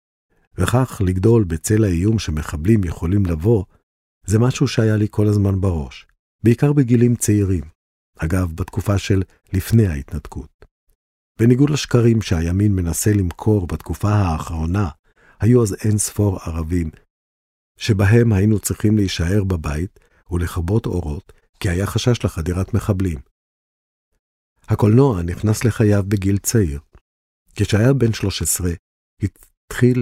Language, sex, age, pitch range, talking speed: Hebrew, male, 50-69, 85-110 Hz, 110 wpm